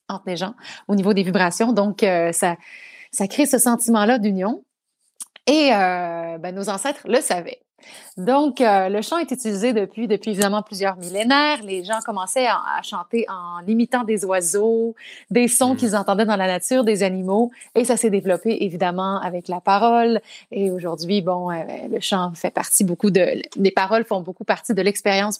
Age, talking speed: 30-49, 180 wpm